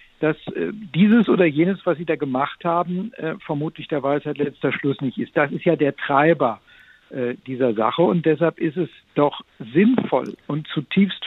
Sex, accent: male, German